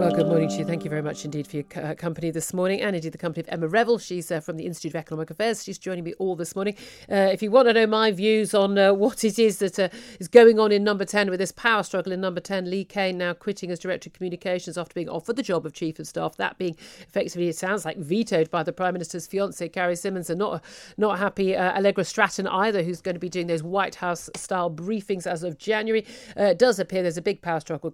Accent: British